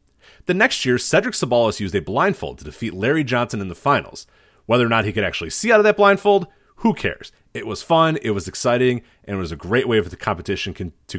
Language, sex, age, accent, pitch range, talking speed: English, male, 30-49, American, 100-140 Hz, 235 wpm